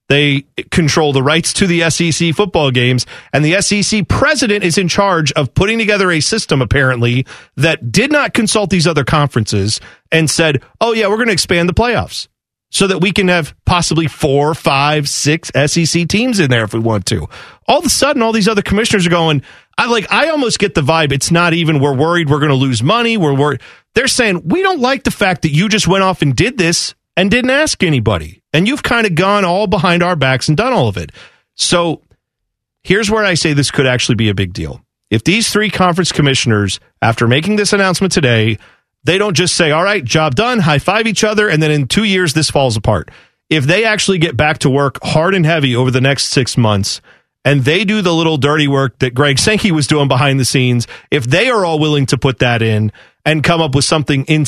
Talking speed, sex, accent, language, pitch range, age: 225 wpm, male, American, English, 135-195 Hz, 40-59